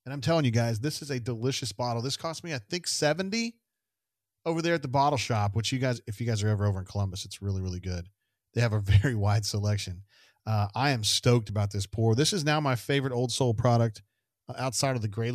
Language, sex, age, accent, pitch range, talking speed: English, male, 40-59, American, 110-140 Hz, 240 wpm